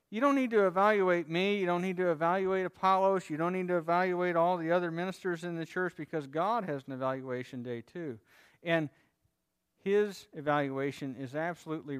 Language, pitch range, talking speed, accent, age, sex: English, 135-180 Hz, 180 wpm, American, 50-69, male